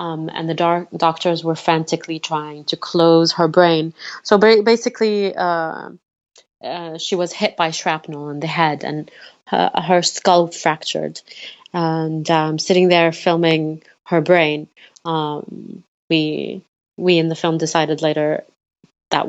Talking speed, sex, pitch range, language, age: 145 wpm, female, 150-170 Hz, English, 30-49